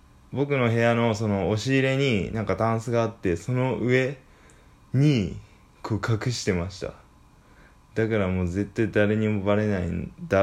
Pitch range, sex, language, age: 100-135 Hz, male, Japanese, 20-39